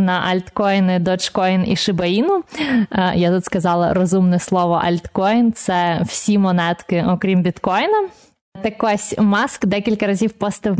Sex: female